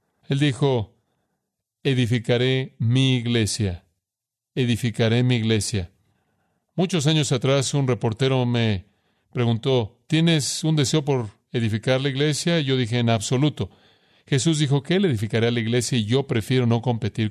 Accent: Mexican